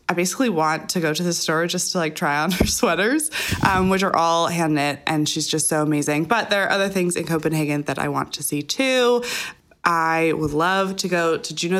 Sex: female